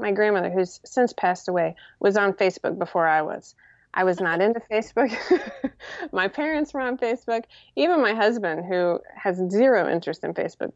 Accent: American